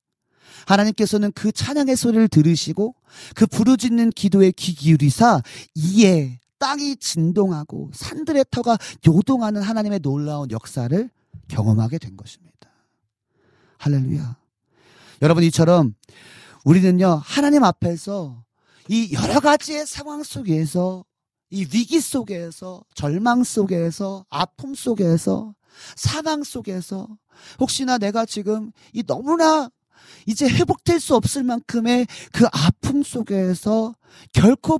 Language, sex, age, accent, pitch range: Korean, male, 40-59, native, 140-230 Hz